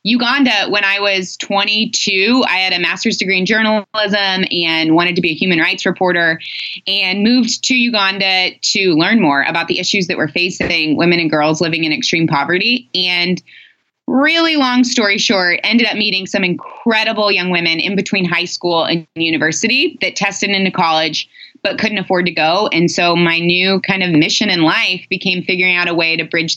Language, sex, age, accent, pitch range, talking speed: English, female, 20-39, American, 165-205 Hz, 185 wpm